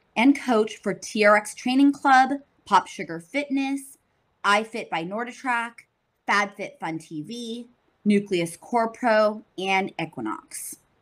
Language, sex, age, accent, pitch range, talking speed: English, female, 20-39, American, 185-240 Hz, 110 wpm